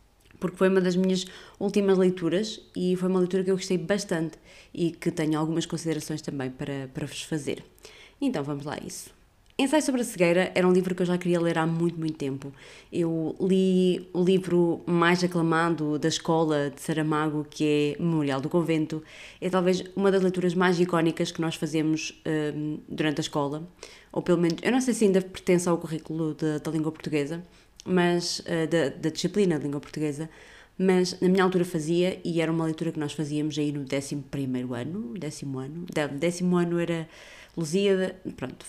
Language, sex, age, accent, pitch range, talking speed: Portuguese, female, 20-39, Brazilian, 155-185 Hz, 190 wpm